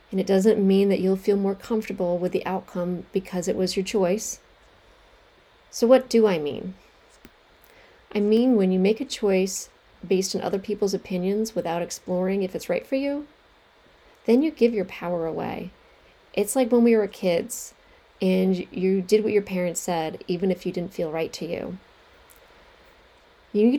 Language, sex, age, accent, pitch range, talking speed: English, female, 30-49, American, 180-225 Hz, 175 wpm